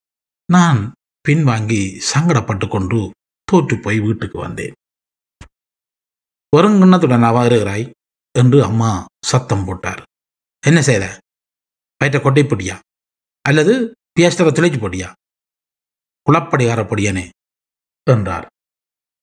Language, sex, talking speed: Tamil, male, 85 wpm